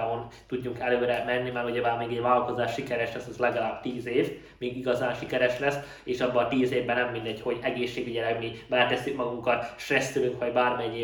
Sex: male